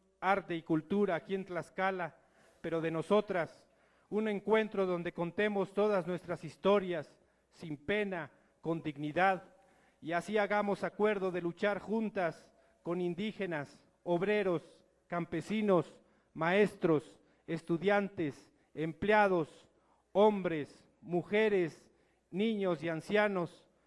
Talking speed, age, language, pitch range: 100 wpm, 50-69, Spanish, 170-200 Hz